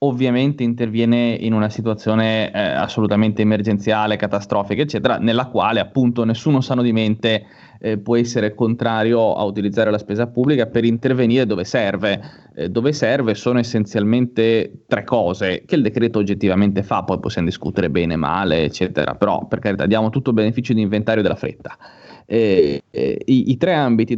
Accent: native